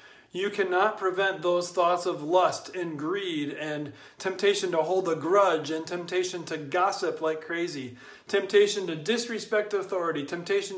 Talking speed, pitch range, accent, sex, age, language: 145 wpm, 160-210 Hz, American, male, 40-59, English